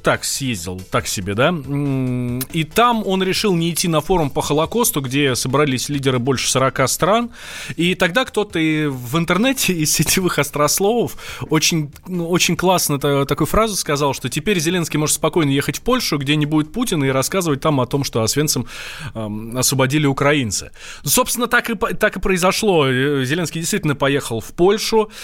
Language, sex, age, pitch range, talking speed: Russian, male, 20-39, 130-175 Hz, 165 wpm